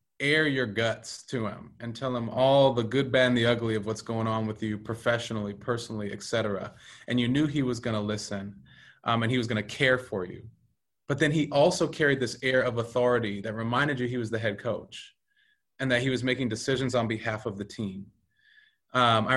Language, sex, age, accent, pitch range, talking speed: English, male, 20-39, American, 110-140 Hz, 225 wpm